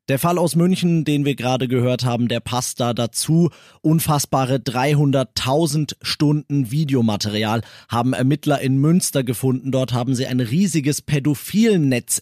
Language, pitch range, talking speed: German, 125-170 Hz, 140 wpm